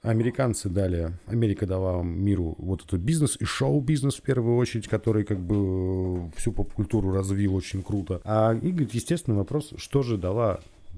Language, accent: Russian, native